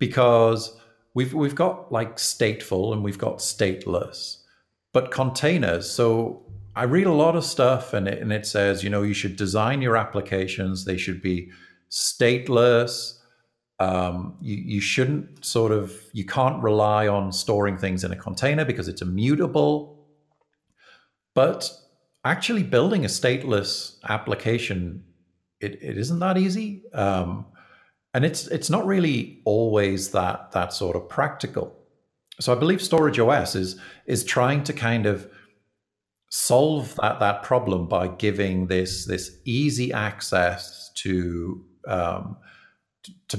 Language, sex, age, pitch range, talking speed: English, male, 50-69, 95-130 Hz, 140 wpm